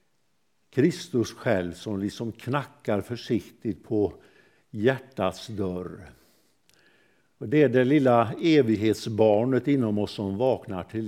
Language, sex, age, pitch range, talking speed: Swedish, male, 60-79, 105-130 Hz, 110 wpm